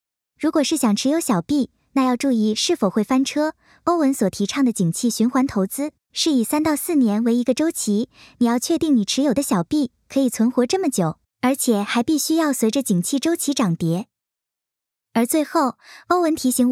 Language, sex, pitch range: Chinese, male, 220-300 Hz